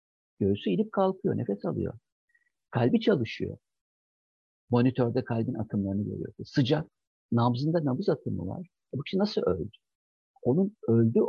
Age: 50-69